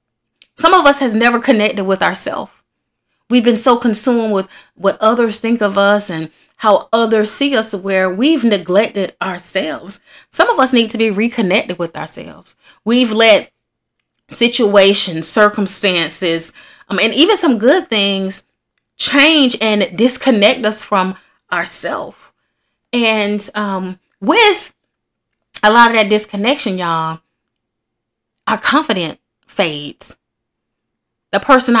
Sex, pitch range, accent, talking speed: female, 195-250 Hz, American, 125 wpm